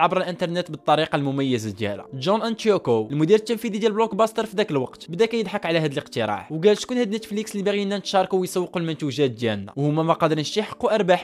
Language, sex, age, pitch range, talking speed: Arabic, male, 20-39, 150-220 Hz, 180 wpm